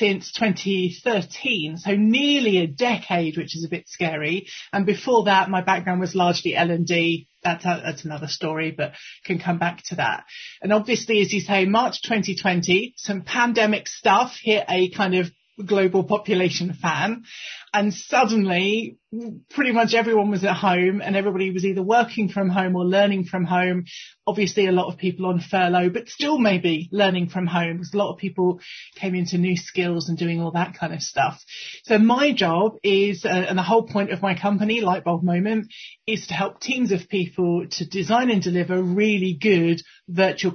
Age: 30-49